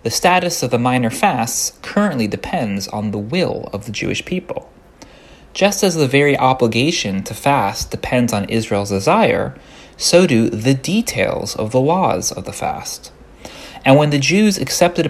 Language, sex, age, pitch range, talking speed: English, male, 30-49, 115-160 Hz, 165 wpm